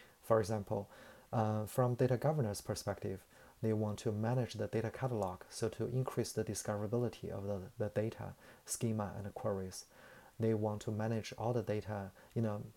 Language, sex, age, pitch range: Chinese, male, 30-49, 105-120 Hz